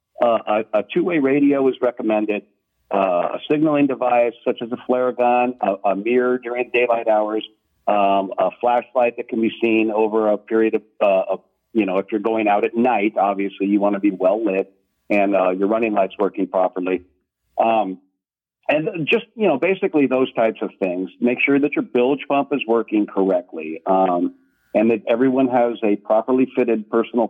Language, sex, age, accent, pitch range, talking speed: English, male, 50-69, American, 100-125 Hz, 185 wpm